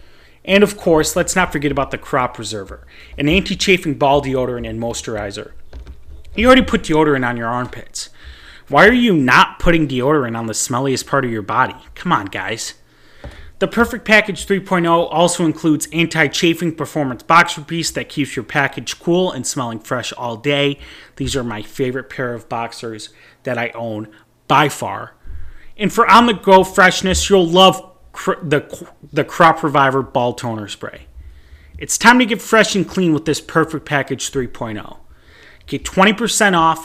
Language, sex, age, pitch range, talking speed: English, male, 30-49, 120-175 Hz, 165 wpm